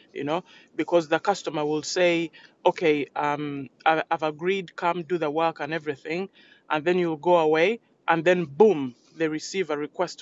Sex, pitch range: male, 150-190 Hz